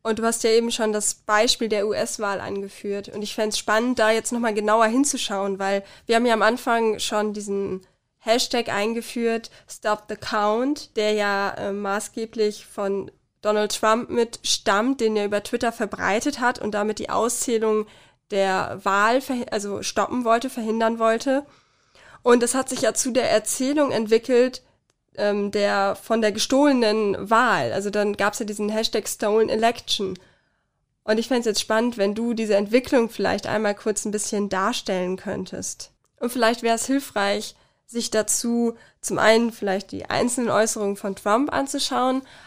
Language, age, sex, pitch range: German, 20-39, female, 205-235 Hz